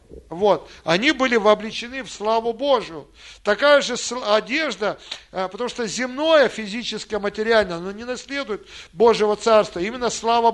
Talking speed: 125 wpm